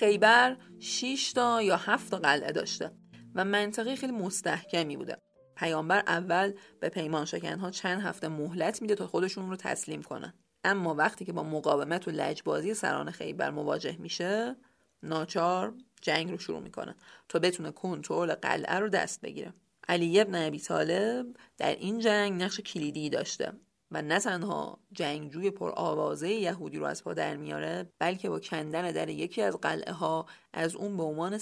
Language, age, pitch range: English, 40-59, 160-205 Hz